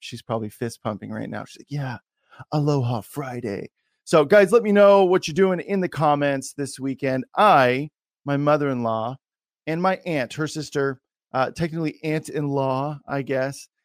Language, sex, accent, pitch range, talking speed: English, male, American, 130-170 Hz, 160 wpm